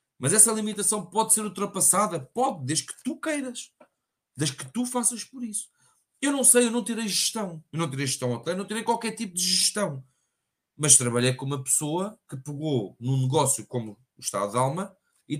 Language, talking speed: Portuguese, 200 wpm